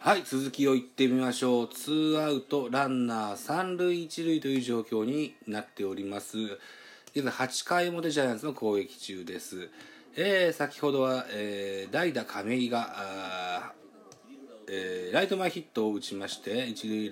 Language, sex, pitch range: Japanese, male, 105-165 Hz